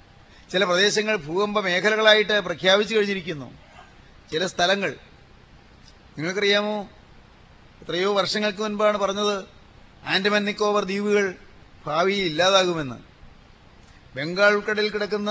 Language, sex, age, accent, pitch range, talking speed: Malayalam, male, 30-49, native, 165-210 Hz, 80 wpm